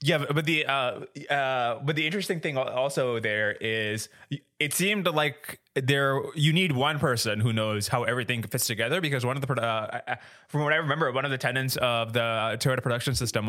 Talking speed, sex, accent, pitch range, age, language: 195 wpm, male, American, 115-140 Hz, 20-39, English